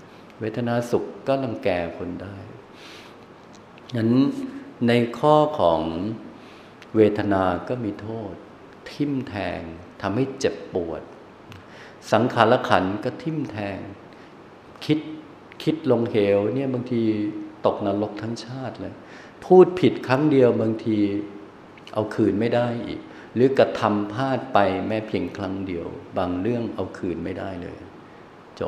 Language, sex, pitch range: Thai, male, 100-120 Hz